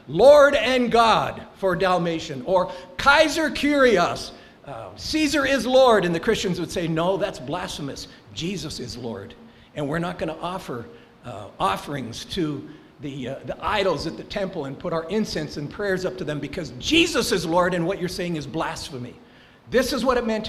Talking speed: 180 wpm